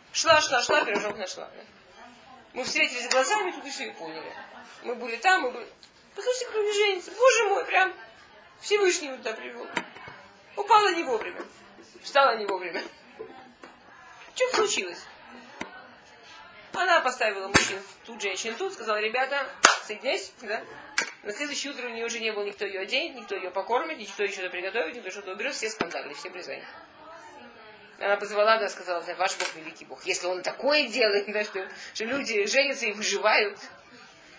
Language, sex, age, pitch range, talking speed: Russian, female, 20-39, 205-280 Hz, 155 wpm